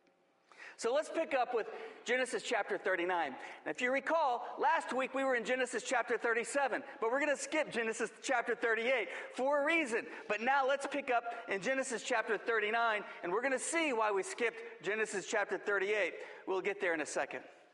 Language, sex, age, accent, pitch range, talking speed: English, male, 40-59, American, 215-295 Hz, 190 wpm